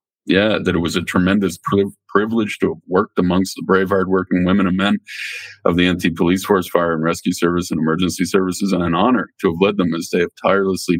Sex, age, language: male, 50-69, English